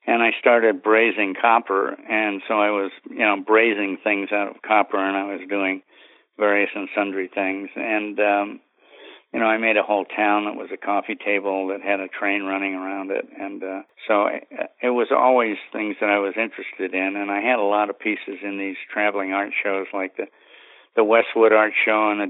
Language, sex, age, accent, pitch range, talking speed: English, male, 50-69, American, 100-115 Hz, 210 wpm